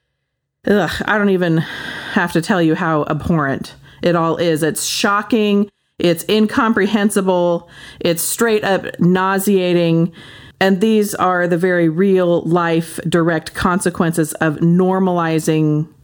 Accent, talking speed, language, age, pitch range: American, 115 wpm, English, 40-59, 160-195 Hz